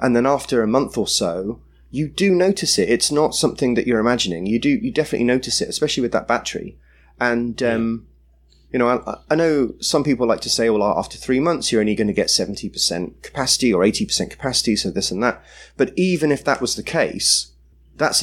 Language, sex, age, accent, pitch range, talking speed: English, male, 30-49, British, 105-135 Hz, 215 wpm